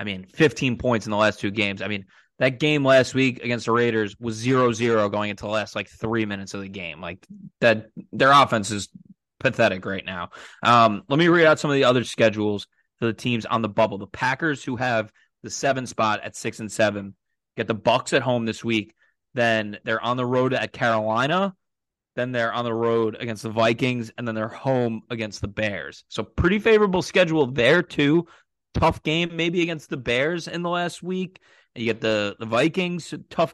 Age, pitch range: 20-39, 105-135 Hz